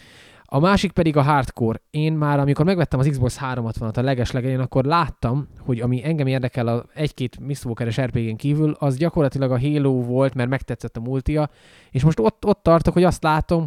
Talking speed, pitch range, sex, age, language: 195 wpm, 120-145 Hz, male, 20-39, Hungarian